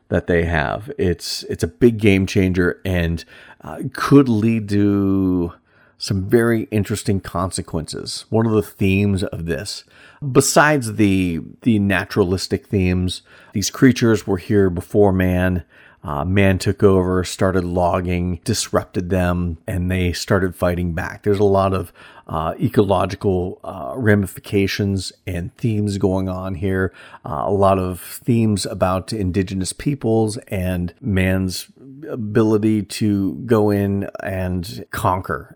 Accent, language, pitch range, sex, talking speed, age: American, English, 90-105 Hz, male, 130 wpm, 40-59